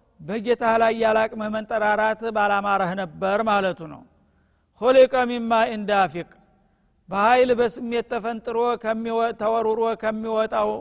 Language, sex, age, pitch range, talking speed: Amharic, male, 50-69, 210-235 Hz, 90 wpm